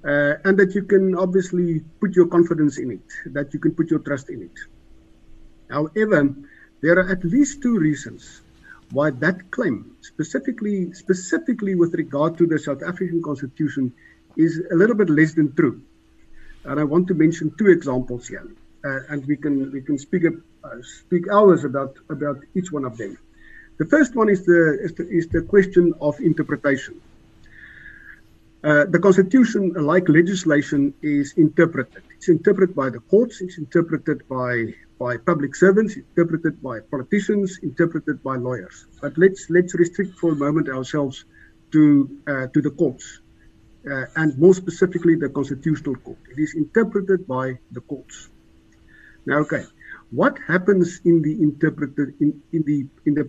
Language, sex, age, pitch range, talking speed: English, male, 50-69, 145-180 Hz, 160 wpm